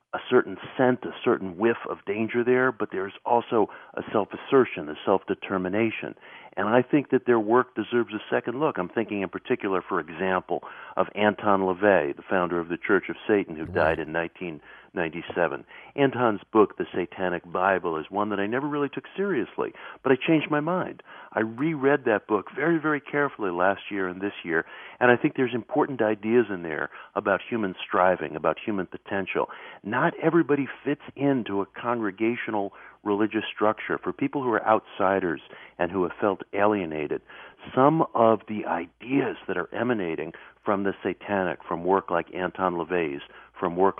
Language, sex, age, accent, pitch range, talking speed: English, male, 50-69, American, 95-130 Hz, 170 wpm